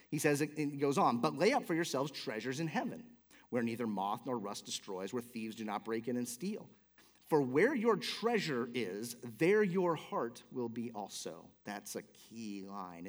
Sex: male